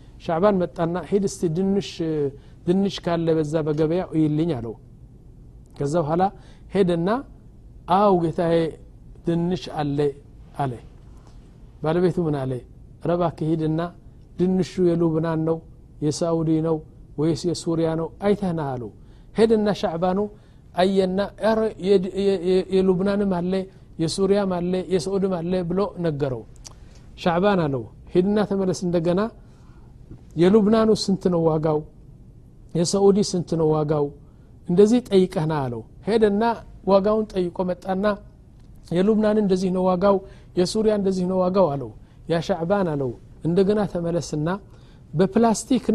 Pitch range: 150-200 Hz